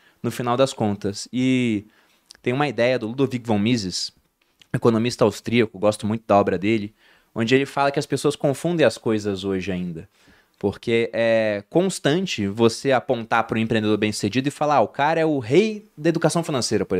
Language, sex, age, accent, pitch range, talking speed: Portuguese, male, 20-39, Brazilian, 115-170 Hz, 180 wpm